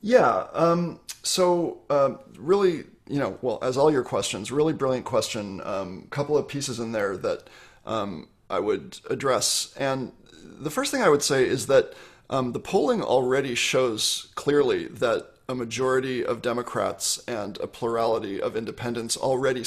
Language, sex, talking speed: English, male, 160 wpm